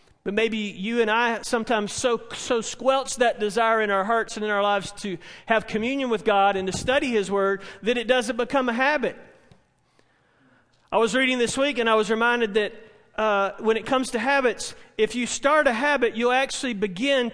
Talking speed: 200 wpm